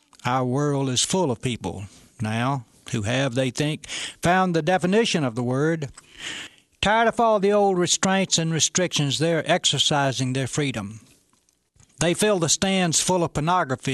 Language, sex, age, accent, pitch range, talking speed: English, male, 60-79, American, 125-180 Hz, 155 wpm